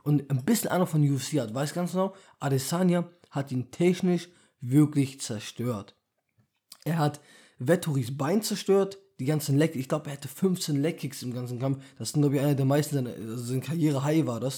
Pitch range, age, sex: 130-160 Hz, 20-39, male